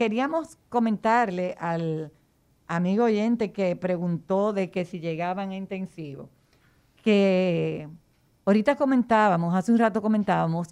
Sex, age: female, 50-69